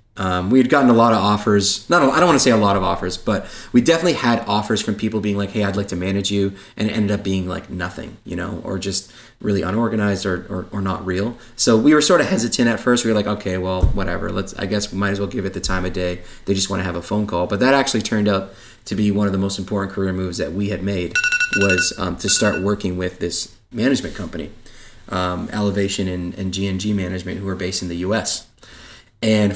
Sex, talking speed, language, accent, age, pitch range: male, 260 wpm, English, American, 20-39, 95-115 Hz